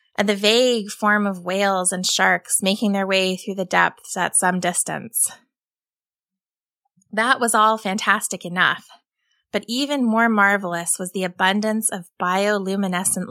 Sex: female